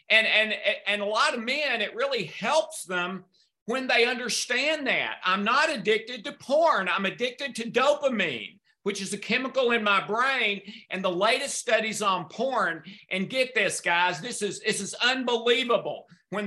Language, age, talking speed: English, 50-69, 170 wpm